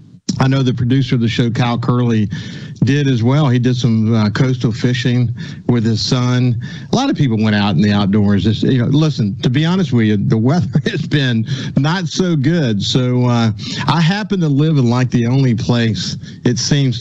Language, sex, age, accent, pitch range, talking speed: English, male, 50-69, American, 115-145 Hz, 200 wpm